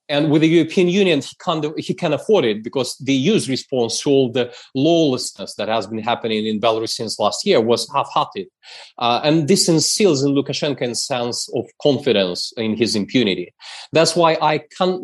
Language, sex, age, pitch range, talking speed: English, male, 30-49, 120-155 Hz, 175 wpm